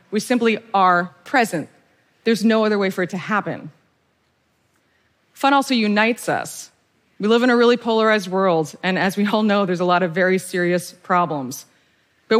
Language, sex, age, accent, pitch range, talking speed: Spanish, female, 30-49, American, 175-225 Hz, 175 wpm